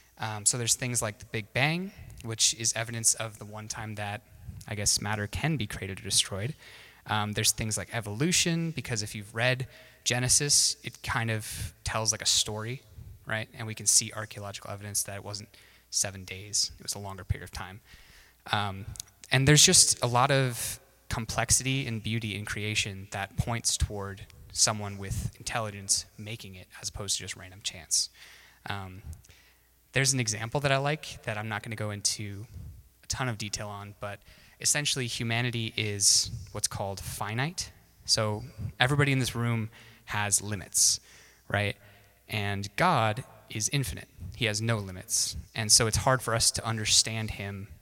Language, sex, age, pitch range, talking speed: English, male, 20-39, 100-120 Hz, 170 wpm